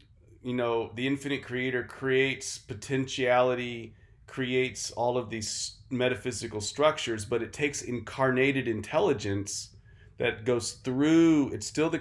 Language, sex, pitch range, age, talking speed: English, male, 105-130 Hz, 40-59, 120 wpm